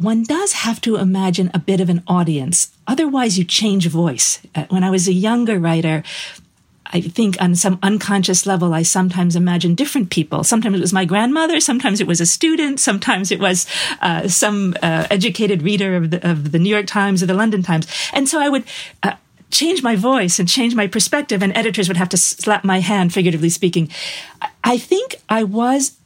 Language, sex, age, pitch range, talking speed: English, female, 40-59, 175-225 Hz, 195 wpm